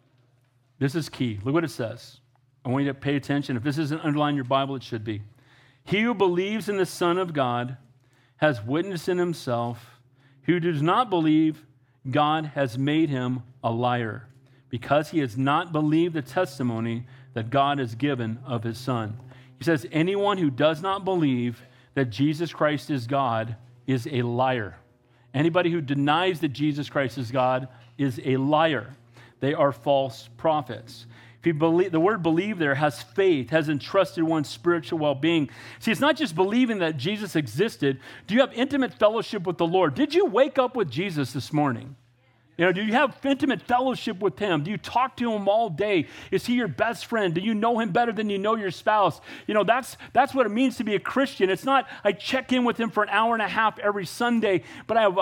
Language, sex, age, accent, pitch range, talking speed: English, male, 40-59, American, 130-195 Hz, 205 wpm